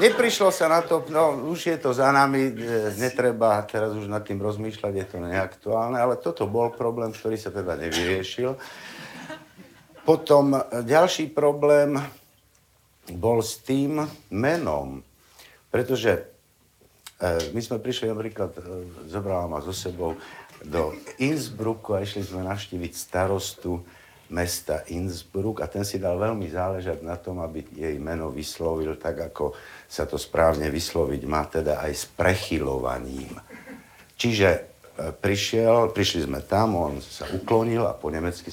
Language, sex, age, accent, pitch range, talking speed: Czech, male, 60-79, native, 85-115 Hz, 135 wpm